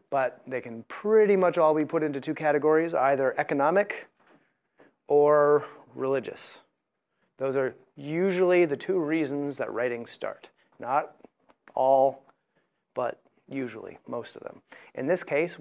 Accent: American